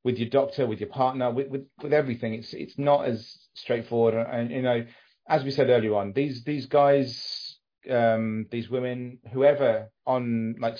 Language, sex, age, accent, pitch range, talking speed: English, male, 40-59, British, 120-155 Hz, 180 wpm